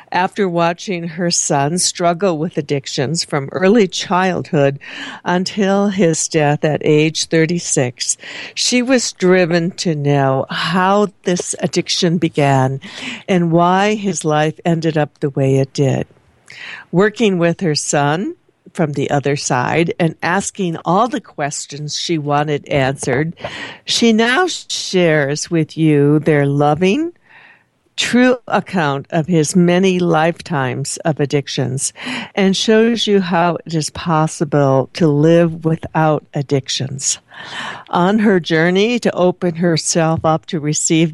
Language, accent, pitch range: English, American, 150-185 Hz